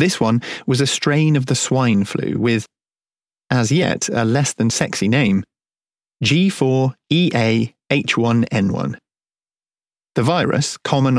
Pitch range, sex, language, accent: 115-145 Hz, male, English, British